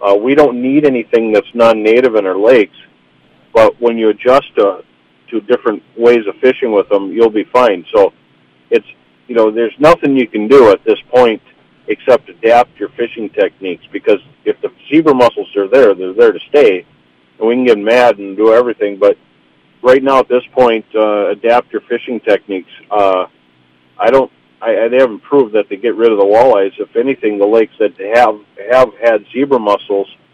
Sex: male